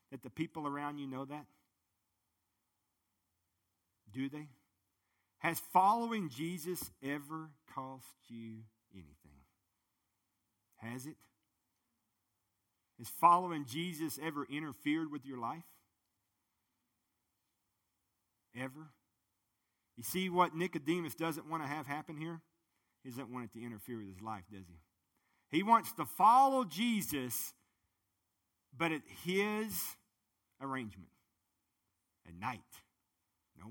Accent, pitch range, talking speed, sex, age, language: American, 105-165 Hz, 105 wpm, male, 50-69, English